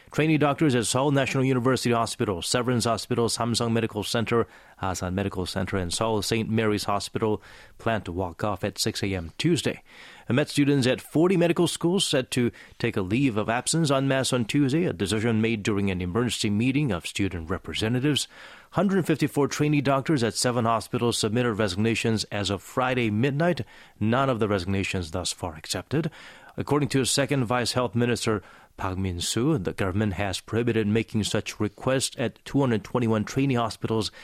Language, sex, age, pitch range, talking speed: English, male, 30-49, 105-130 Hz, 165 wpm